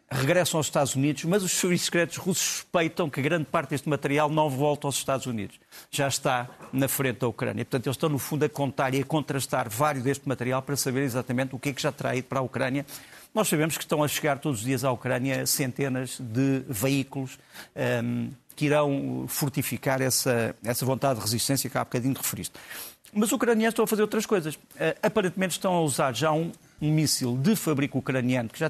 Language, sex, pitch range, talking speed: Portuguese, male, 130-160 Hz, 210 wpm